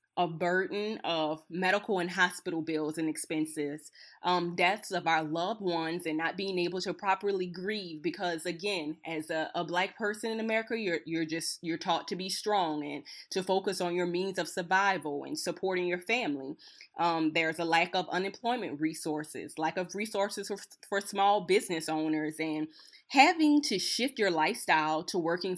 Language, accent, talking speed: English, American, 175 wpm